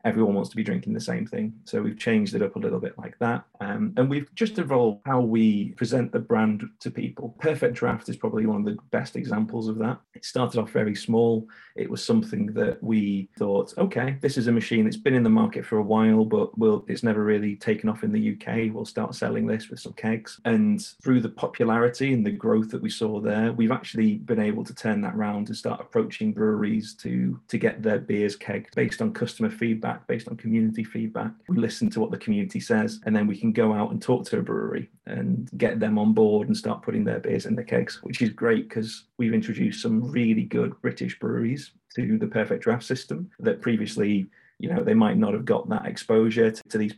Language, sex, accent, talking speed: English, male, British, 230 wpm